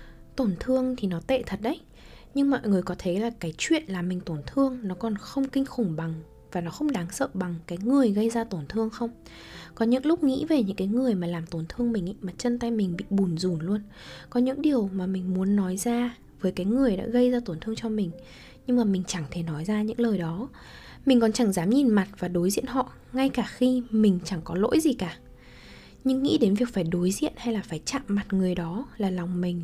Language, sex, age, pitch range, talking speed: Vietnamese, female, 10-29, 185-250 Hz, 250 wpm